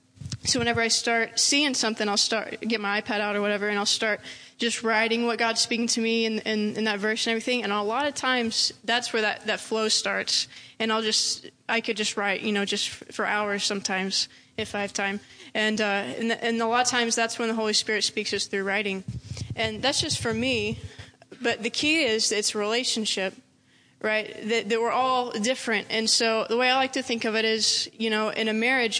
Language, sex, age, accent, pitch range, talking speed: English, female, 20-39, American, 215-250 Hz, 225 wpm